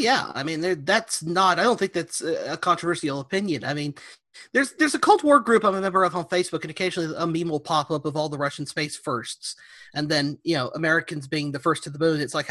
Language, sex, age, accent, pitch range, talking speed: English, male, 30-49, American, 155-205 Hz, 250 wpm